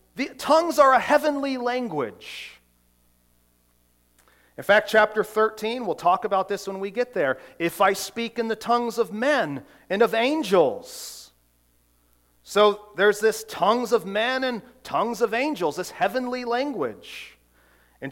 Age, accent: 40-59, American